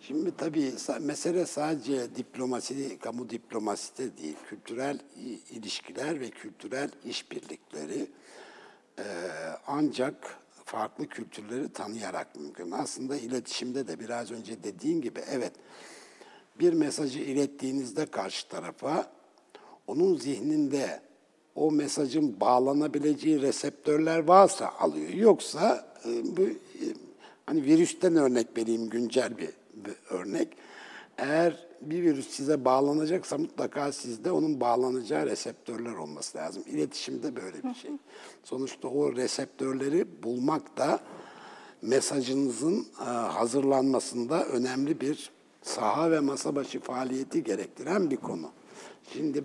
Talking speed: 100 wpm